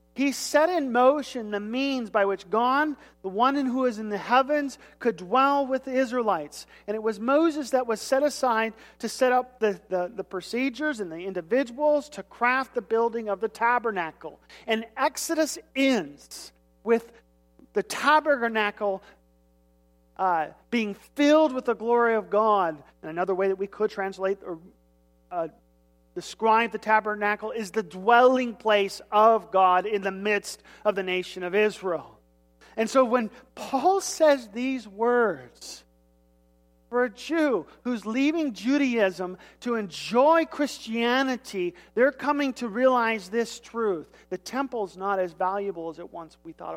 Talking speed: 155 wpm